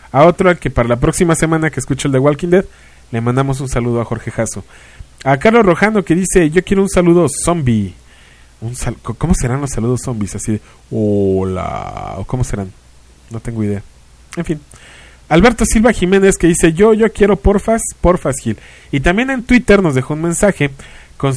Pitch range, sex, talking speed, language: 125-180 Hz, male, 195 wpm, English